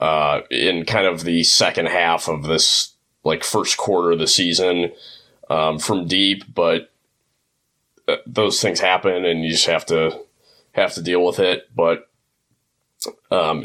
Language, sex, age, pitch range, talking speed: English, male, 30-49, 85-115 Hz, 150 wpm